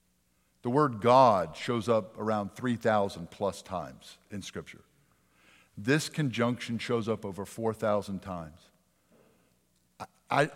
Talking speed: 110 wpm